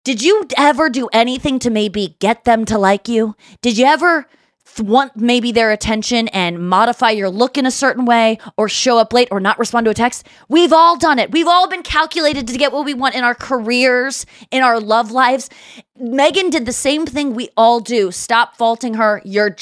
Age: 20-39